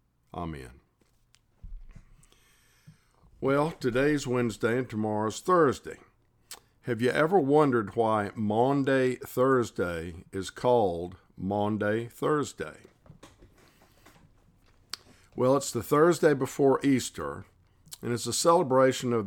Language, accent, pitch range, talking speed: English, American, 100-130 Hz, 90 wpm